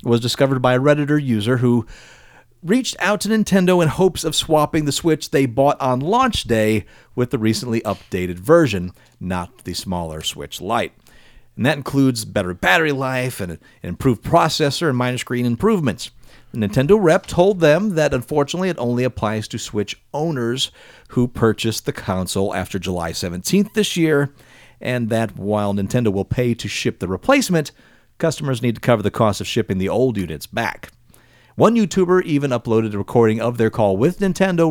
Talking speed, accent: 175 wpm, American